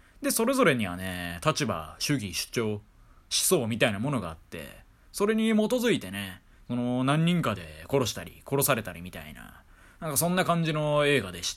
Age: 20-39